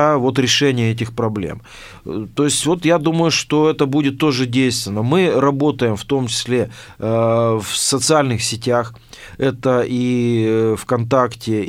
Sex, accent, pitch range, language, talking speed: male, native, 115-140 Hz, Russian, 130 wpm